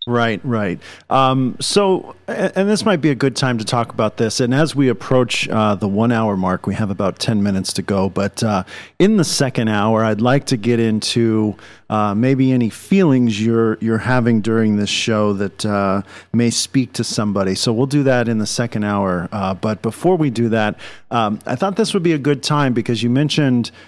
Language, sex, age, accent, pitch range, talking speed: English, male, 40-59, American, 105-130 Hz, 215 wpm